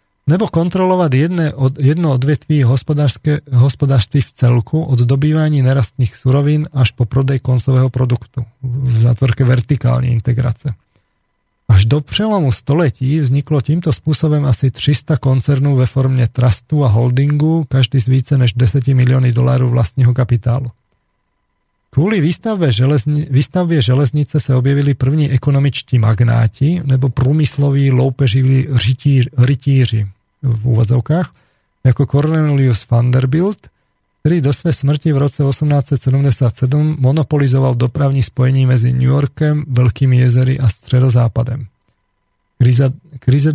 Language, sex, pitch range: Slovak, male, 125-145 Hz